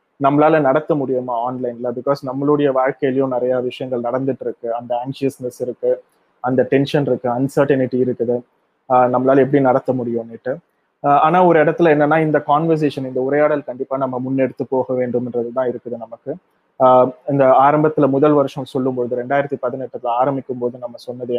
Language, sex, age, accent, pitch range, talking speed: Tamil, male, 20-39, native, 125-145 Hz, 135 wpm